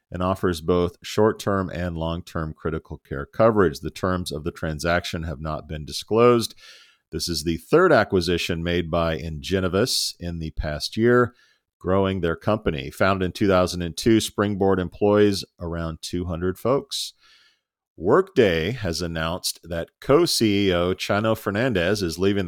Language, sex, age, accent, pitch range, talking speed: English, male, 40-59, American, 85-100 Hz, 135 wpm